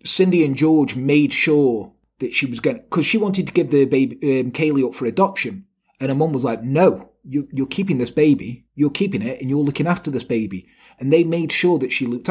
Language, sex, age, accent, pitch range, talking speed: English, male, 30-49, British, 145-205 Hz, 240 wpm